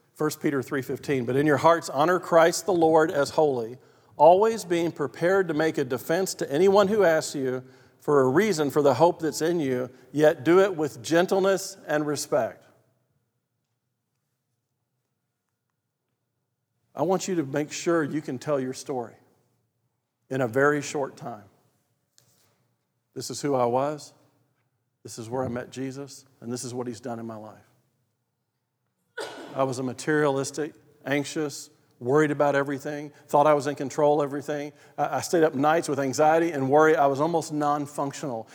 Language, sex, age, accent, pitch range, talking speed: English, male, 50-69, American, 130-170 Hz, 160 wpm